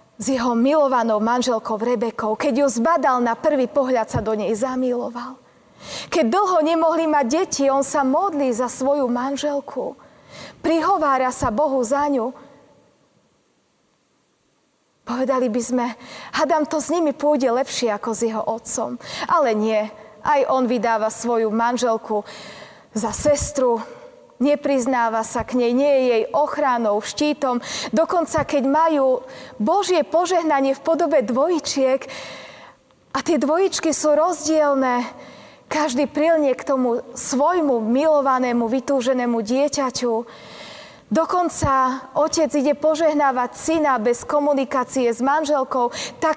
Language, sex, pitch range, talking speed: Slovak, female, 250-305 Hz, 120 wpm